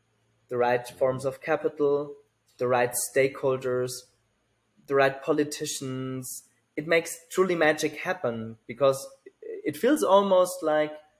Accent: German